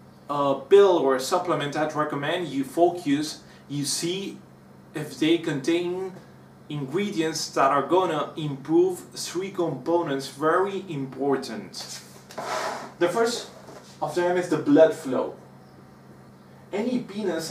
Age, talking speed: 30-49, 105 wpm